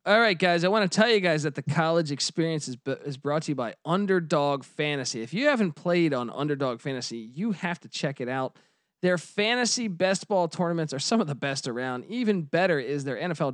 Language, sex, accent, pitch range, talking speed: English, male, American, 145-190 Hz, 225 wpm